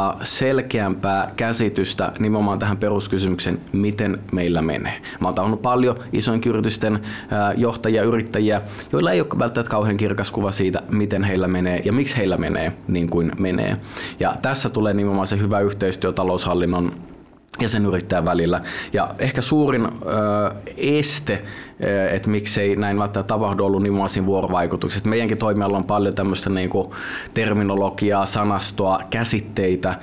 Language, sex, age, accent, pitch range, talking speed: Finnish, male, 20-39, native, 95-110 Hz, 130 wpm